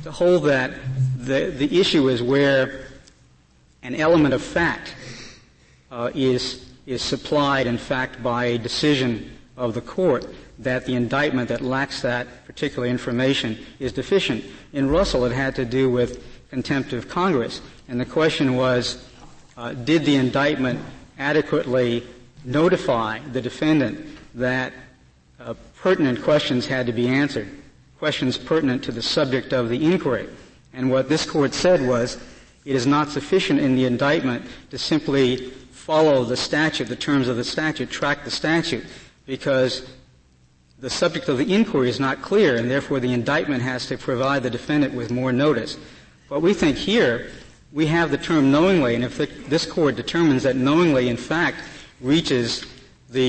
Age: 60-79